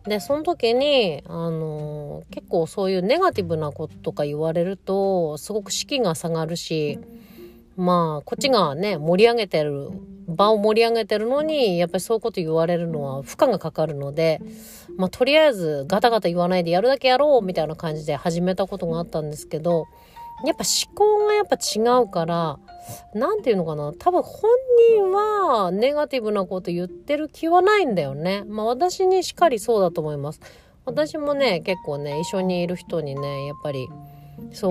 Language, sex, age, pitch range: Japanese, female, 40-59, 160-250 Hz